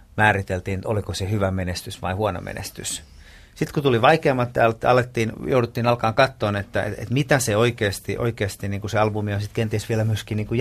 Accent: native